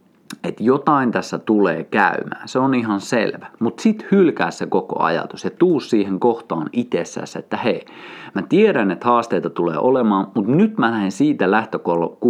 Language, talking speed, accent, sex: Finnish, 160 wpm, native, male